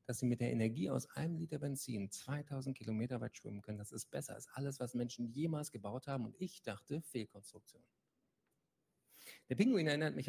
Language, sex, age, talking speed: German, male, 50-69, 185 wpm